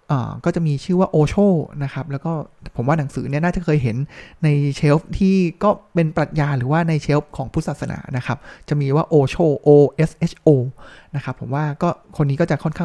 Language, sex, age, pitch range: Thai, male, 20-39, 140-175 Hz